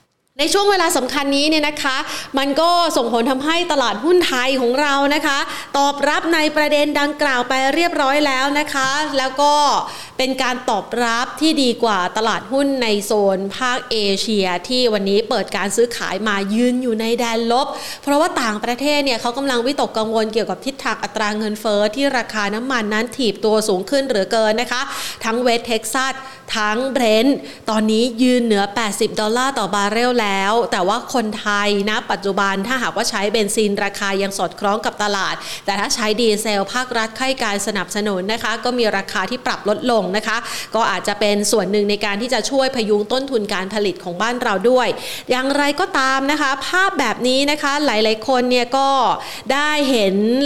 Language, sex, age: Thai, female, 30-49